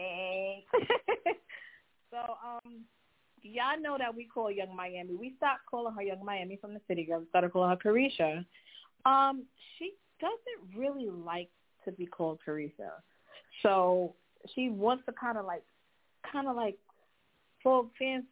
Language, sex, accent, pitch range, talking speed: English, female, American, 180-235 Hz, 140 wpm